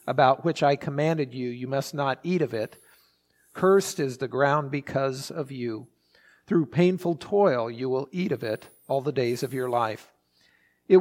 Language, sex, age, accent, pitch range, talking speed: English, male, 50-69, American, 130-165 Hz, 180 wpm